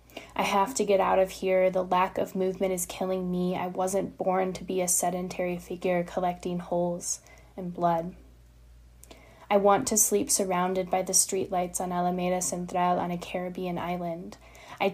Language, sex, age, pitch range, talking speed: English, female, 20-39, 180-190 Hz, 170 wpm